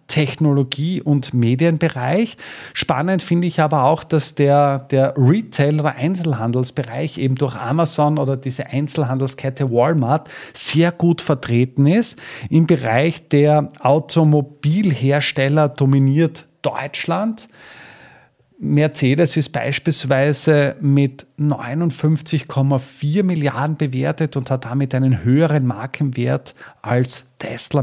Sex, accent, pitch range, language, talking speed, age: male, Austrian, 125-155 Hz, German, 100 wpm, 40-59